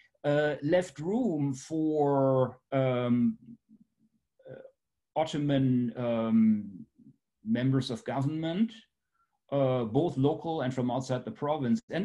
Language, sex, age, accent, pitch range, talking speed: English, male, 40-59, German, 120-155 Hz, 100 wpm